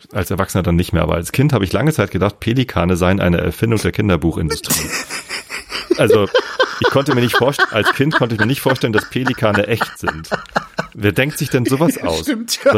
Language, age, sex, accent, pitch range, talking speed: German, 30-49, male, German, 95-120 Hz, 200 wpm